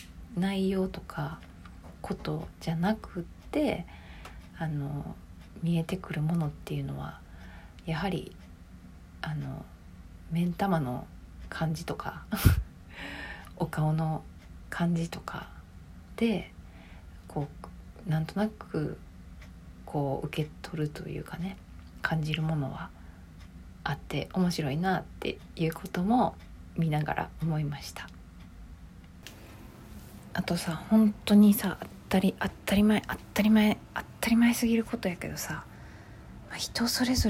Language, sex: Japanese, female